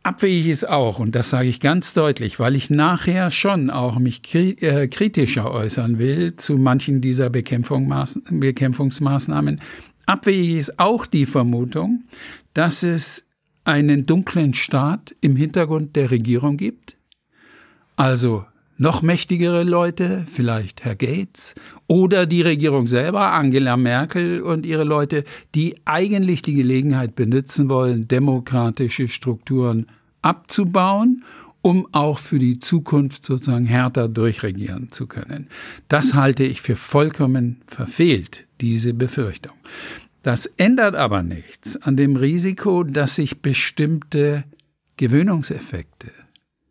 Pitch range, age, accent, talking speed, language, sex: 125-170 Hz, 60-79, German, 120 wpm, German, male